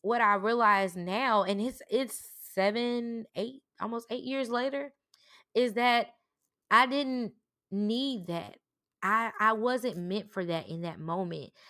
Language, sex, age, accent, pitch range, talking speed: English, female, 20-39, American, 180-225 Hz, 145 wpm